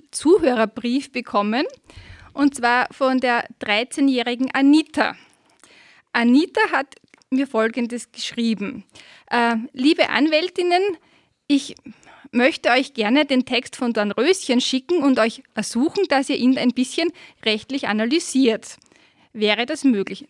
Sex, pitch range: female, 230-290 Hz